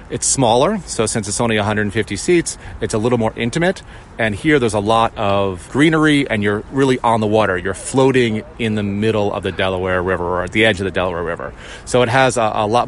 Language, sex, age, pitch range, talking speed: English, male, 30-49, 110-140 Hz, 230 wpm